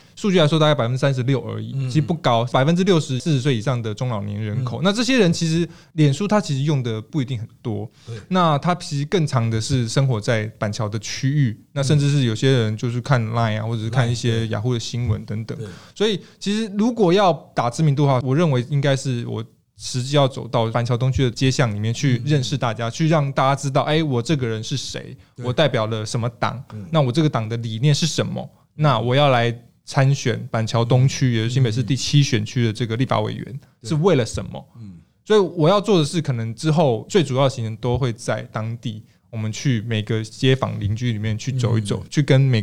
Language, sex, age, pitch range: Chinese, male, 20-39, 115-145 Hz